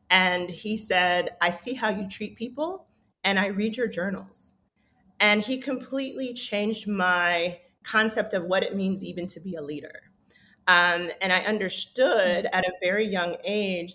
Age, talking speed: 30-49, 165 wpm